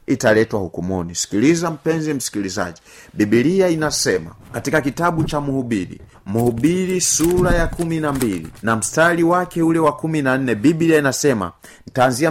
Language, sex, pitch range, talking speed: Swahili, male, 115-175 Hz, 110 wpm